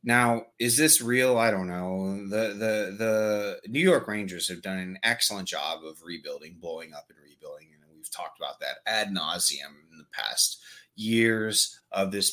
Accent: American